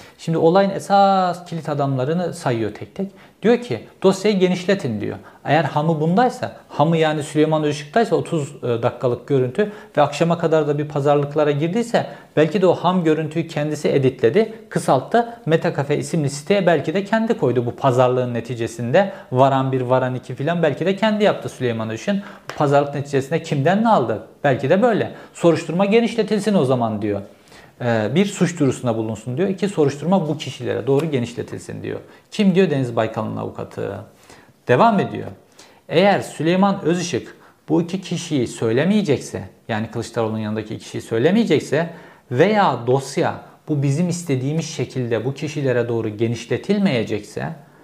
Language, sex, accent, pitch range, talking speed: Turkish, male, native, 125-180 Hz, 140 wpm